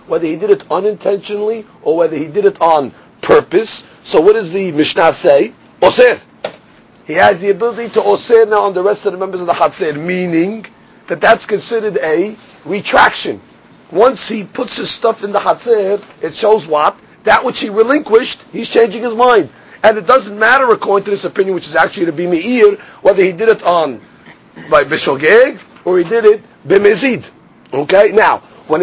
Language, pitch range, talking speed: English, 190-240 Hz, 185 wpm